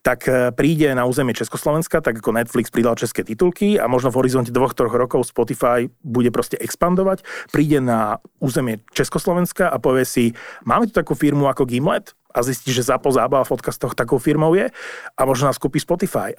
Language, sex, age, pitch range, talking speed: Slovak, male, 30-49, 120-150 Hz, 180 wpm